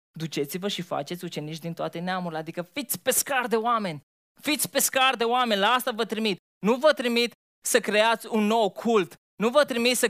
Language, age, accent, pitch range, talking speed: Romanian, 20-39, native, 170-220 Hz, 190 wpm